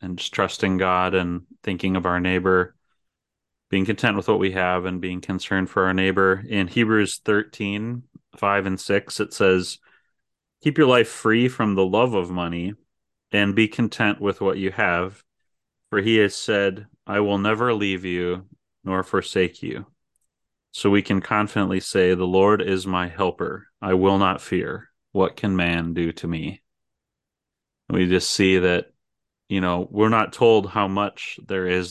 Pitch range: 90-100 Hz